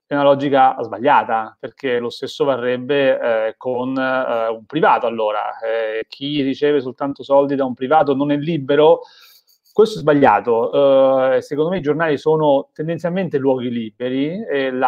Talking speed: 140 wpm